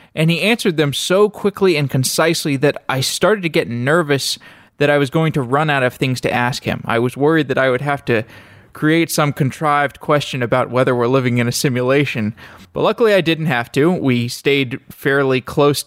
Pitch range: 125-160 Hz